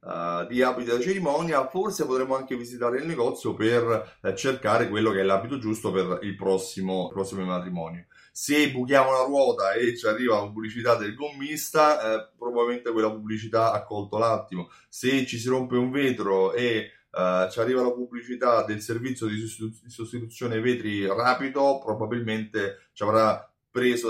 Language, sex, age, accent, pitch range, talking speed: Italian, male, 30-49, native, 105-140 Hz, 155 wpm